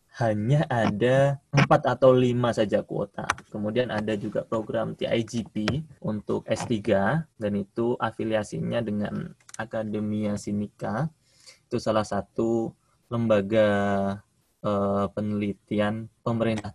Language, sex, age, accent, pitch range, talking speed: Indonesian, male, 20-39, native, 105-130 Hz, 95 wpm